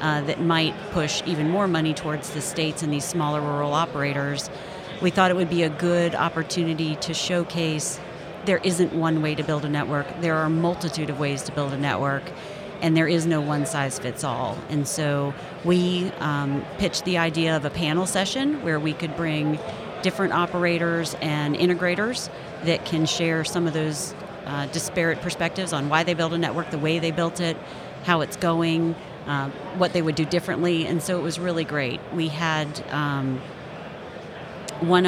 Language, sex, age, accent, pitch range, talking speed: English, female, 40-59, American, 155-175 Hz, 185 wpm